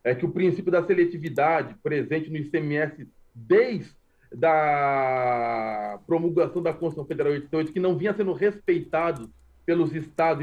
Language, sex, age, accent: Portuguese, male, 40-59, Brazilian